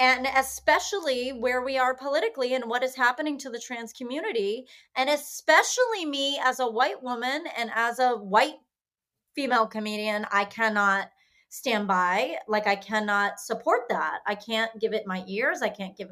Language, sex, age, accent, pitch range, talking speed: English, female, 30-49, American, 220-290 Hz, 170 wpm